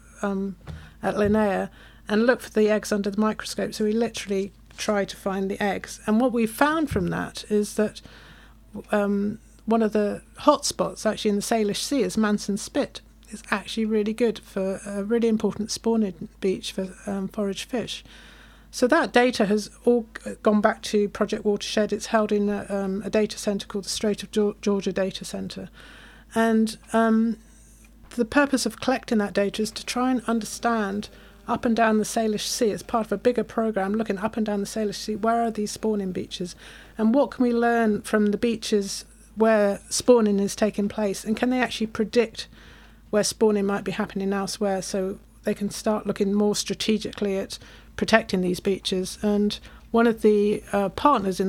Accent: British